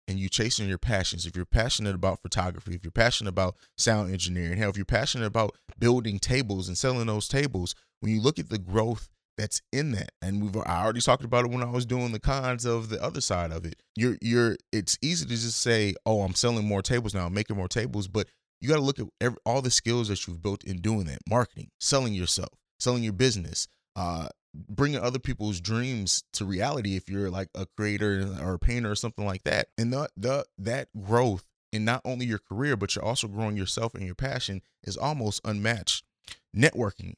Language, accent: English, American